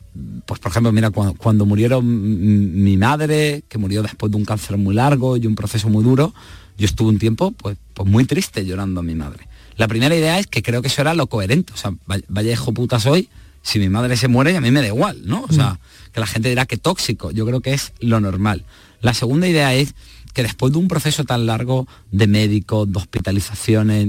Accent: Spanish